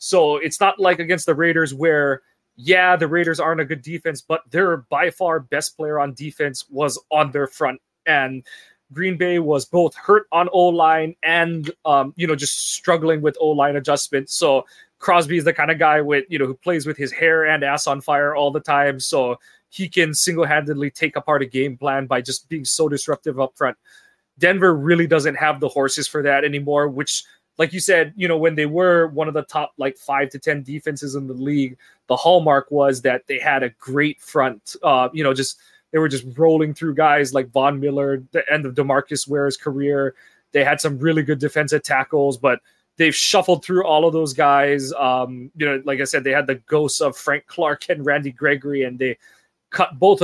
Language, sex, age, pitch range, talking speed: English, male, 20-39, 140-165 Hz, 210 wpm